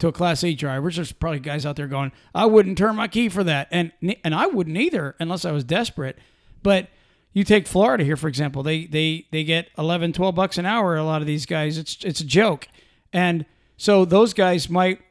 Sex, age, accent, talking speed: male, 40-59, American, 225 wpm